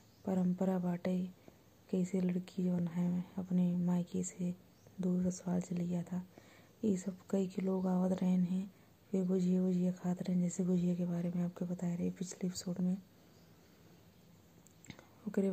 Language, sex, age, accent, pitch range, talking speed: Hindi, female, 20-39, native, 175-185 Hz, 150 wpm